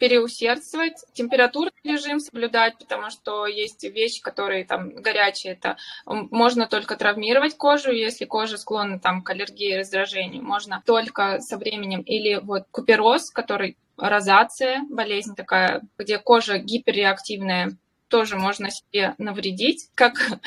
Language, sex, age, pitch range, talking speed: Russian, female, 20-39, 205-250 Hz, 125 wpm